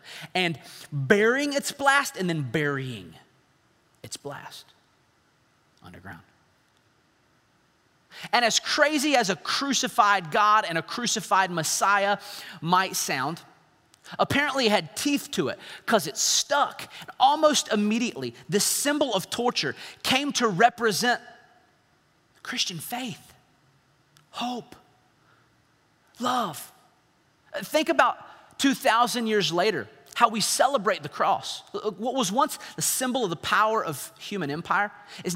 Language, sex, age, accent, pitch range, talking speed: English, male, 30-49, American, 165-235 Hz, 115 wpm